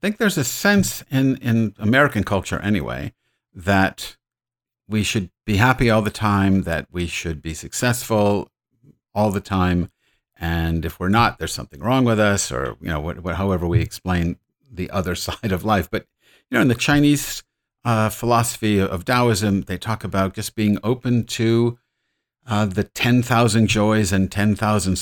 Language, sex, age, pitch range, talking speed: English, male, 50-69, 90-115 Hz, 170 wpm